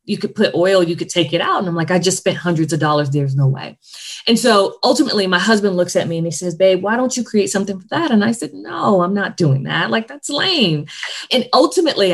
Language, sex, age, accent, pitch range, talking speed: English, female, 20-39, American, 160-200 Hz, 260 wpm